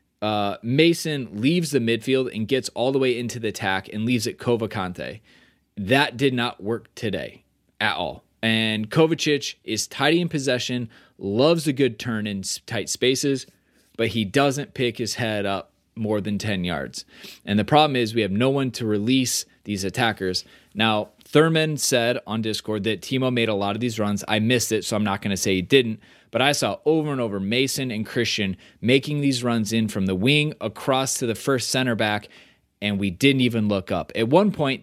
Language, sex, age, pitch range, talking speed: English, male, 20-39, 110-145 Hz, 200 wpm